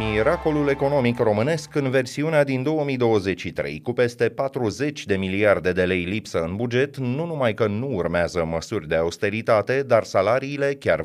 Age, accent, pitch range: 30-49, native, 100-140 Hz